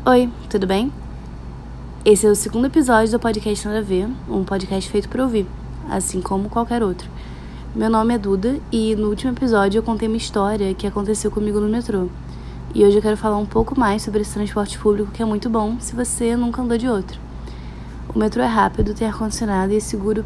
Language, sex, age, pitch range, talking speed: Portuguese, female, 20-39, 180-220 Hz, 205 wpm